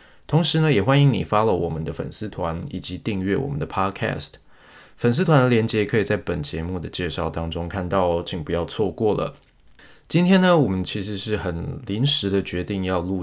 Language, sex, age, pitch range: Chinese, male, 20-39, 90-110 Hz